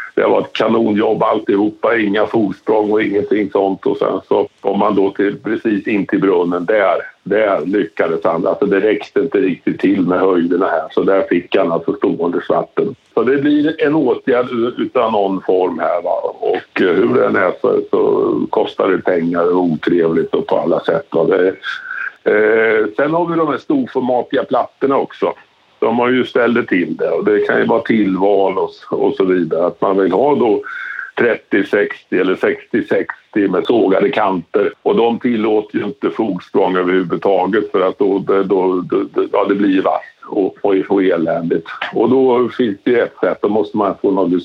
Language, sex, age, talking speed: Swedish, male, 60-79, 180 wpm